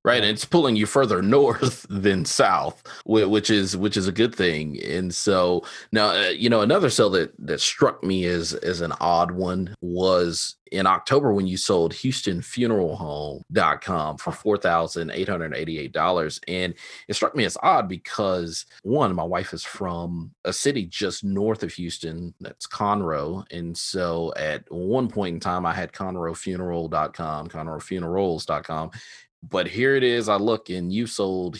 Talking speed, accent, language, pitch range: 175 wpm, American, English, 85-100 Hz